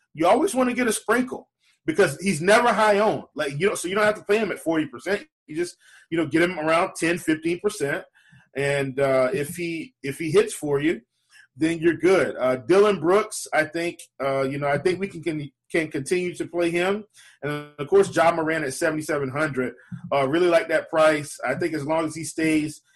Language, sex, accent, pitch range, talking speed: English, male, American, 150-180 Hz, 210 wpm